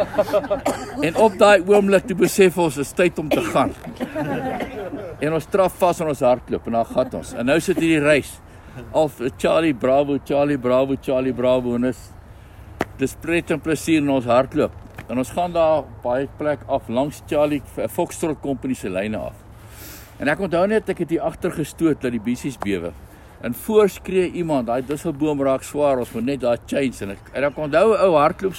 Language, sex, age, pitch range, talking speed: English, male, 60-79, 125-175 Hz, 195 wpm